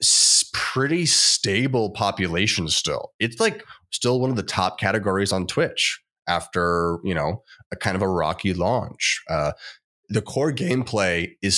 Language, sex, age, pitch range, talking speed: English, male, 20-39, 90-110 Hz, 145 wpm